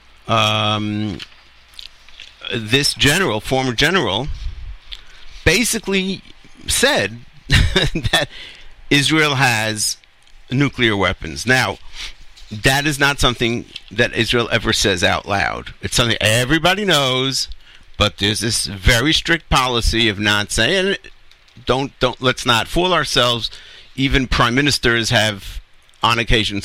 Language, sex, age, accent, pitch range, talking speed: English, male, 50-69, American, 105-140 Hz, 110 wpm